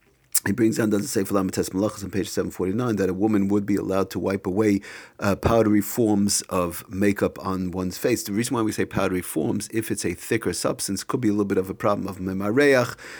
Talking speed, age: 230 wpm, 50-69